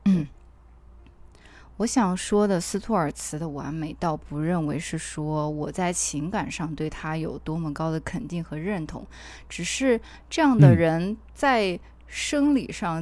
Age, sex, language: 20-39, female, Chinese